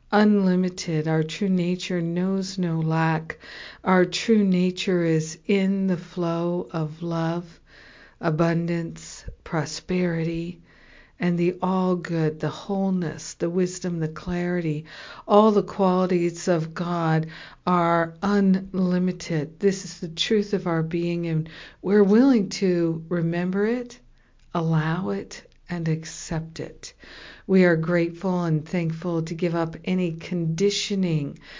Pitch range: 165-185 Hz